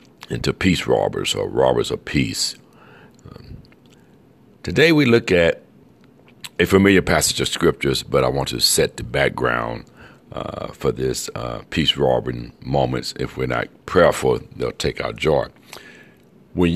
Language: English